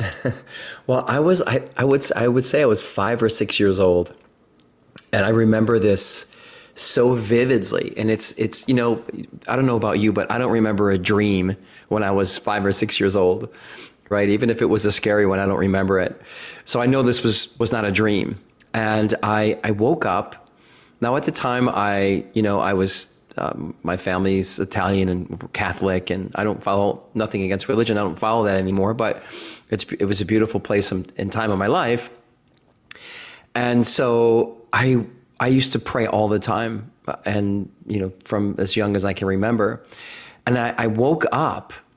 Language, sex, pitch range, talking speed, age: English, male, 100-115 Hz, 195 wpm, 20-39